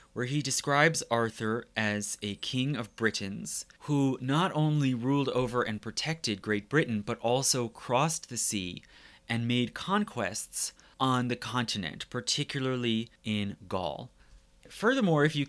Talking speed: 135 wpm